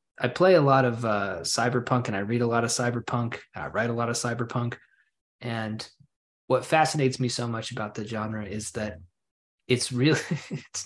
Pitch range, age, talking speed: 105-125 Hz, 20-39, 190 wpm